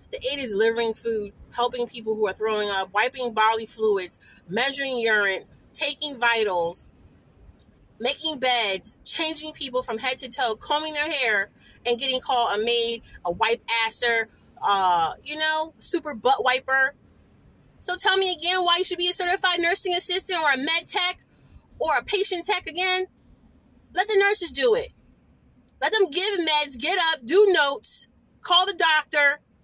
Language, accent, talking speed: English, American, 160 wpm